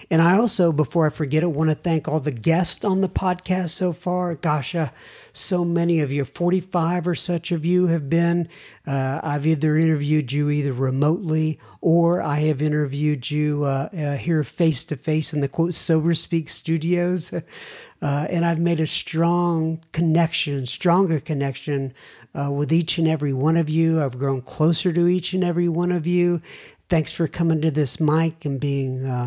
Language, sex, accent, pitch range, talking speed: English, male, American, 145-170 Hz, 180 wpm